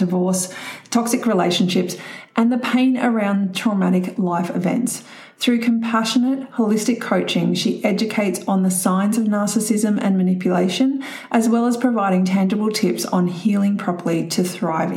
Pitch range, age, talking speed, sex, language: 185-230 Hz, 30-49, 135 wpm, female, English